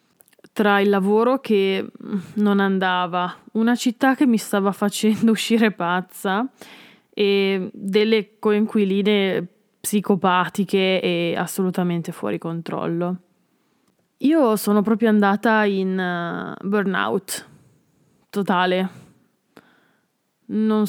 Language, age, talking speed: Italian, 20-39, 85 wpm